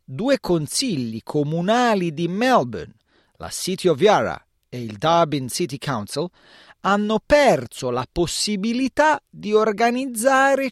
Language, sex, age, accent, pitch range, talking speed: Italian, male, 40-59, native, 130-220 Hz, 110 wpm